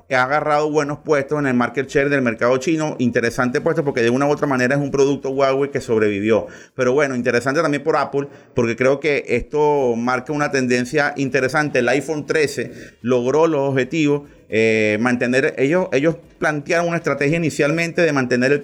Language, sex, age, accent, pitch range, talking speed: Spanish, male, 30-49, Venezuelan, 120-150 Hz, 185 wpm